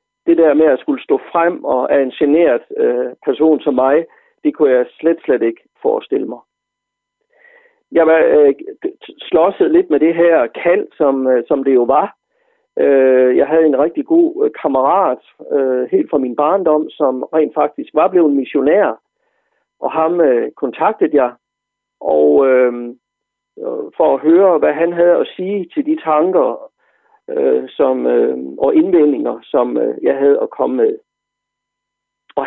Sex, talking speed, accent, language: male, 165 wpm, native, Danish